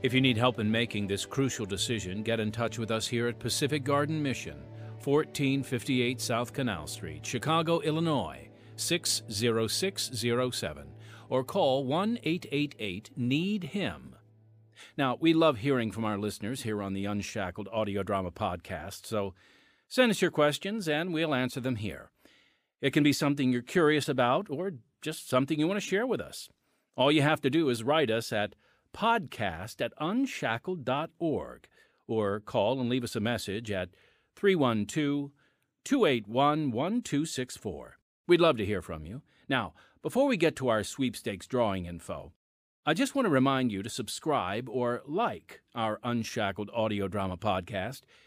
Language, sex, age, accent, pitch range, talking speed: English, male, 50-69, American, 110-145 Hz, 150 wpm